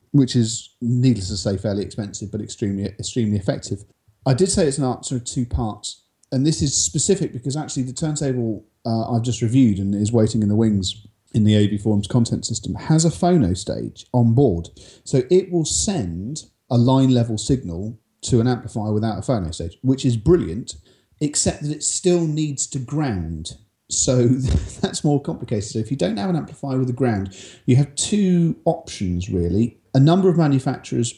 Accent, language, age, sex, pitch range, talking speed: British, English, 40-59, male, 100-130 Hz, 185 wpm